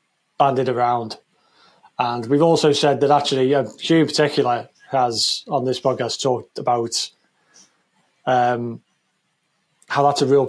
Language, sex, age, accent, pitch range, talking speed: English, male, 30-49, British, 130-160 Hz, 125 wpm